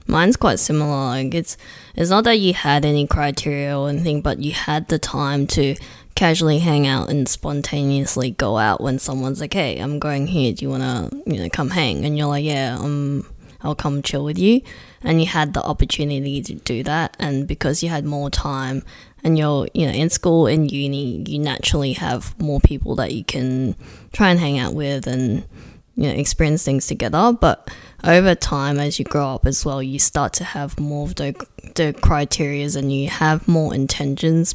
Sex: female